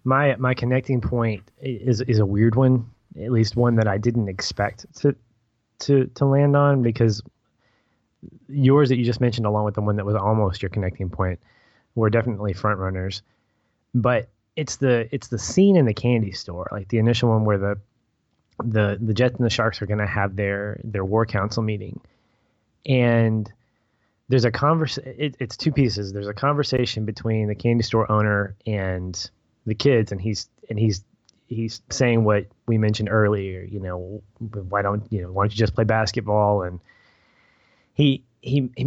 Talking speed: 180 wpm